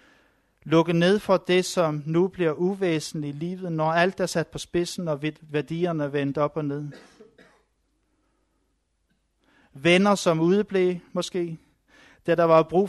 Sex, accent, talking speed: male, native, 140 wpm